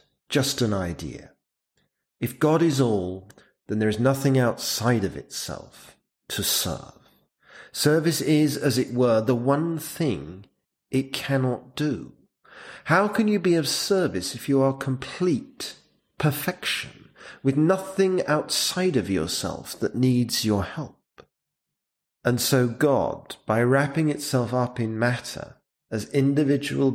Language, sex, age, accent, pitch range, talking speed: English, male, 40-59, British, 120-150 Hz, 130 wpm